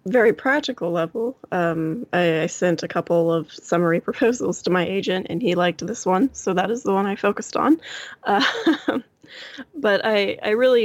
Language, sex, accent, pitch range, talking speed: English, female, American, 165-200 Hz, 185 wpm